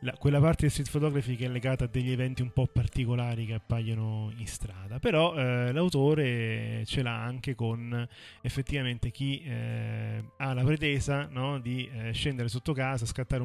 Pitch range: 115-135 Hz